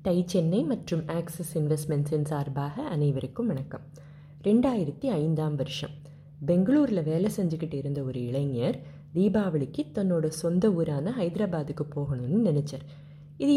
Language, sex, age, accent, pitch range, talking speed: Tamil, female, 30-49, native, 145-185 Hz, 110 wpm